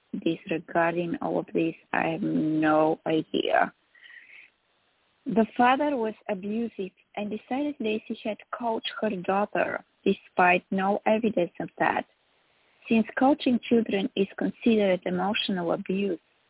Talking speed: 115 wpm